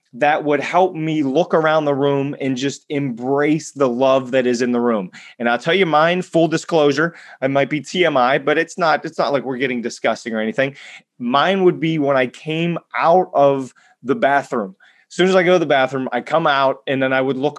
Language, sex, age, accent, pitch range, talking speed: English, male, 30-49, American, 130-160 Hz, 220 wpm